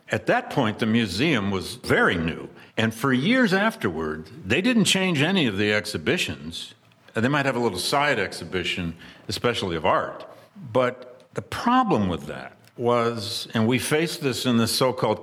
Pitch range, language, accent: 100-130 Hz, English, American